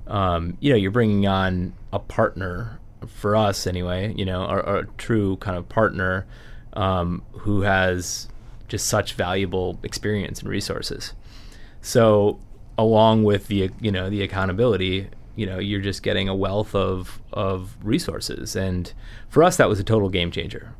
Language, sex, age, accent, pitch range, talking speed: English, male, 20-39, American, 90-105 Hz, 155 wpm